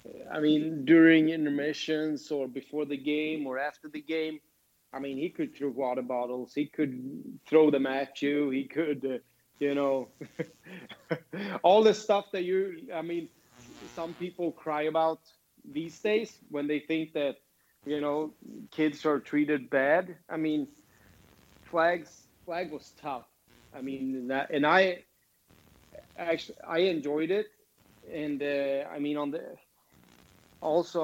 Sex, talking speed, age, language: male, 145 wpm, 30-49, English